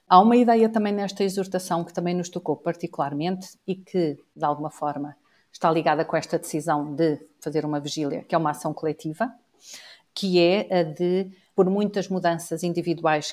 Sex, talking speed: female, 170 wpm